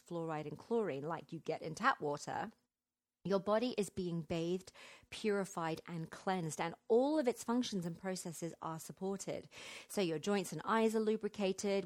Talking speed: 165 wpm